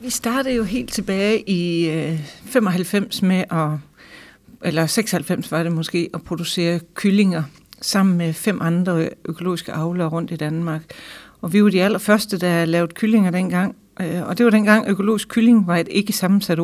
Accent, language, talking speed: native, Danish, 160 wpm